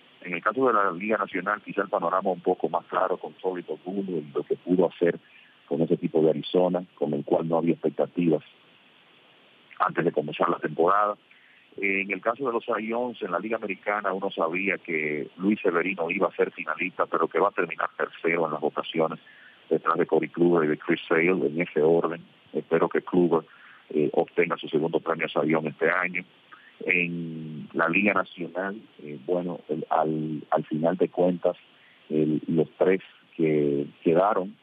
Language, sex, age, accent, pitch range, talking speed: English, male, 40-59, Spanish, 80-100 Hz, 180 wpm